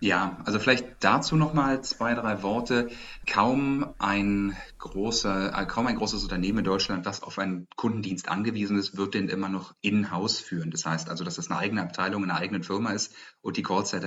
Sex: male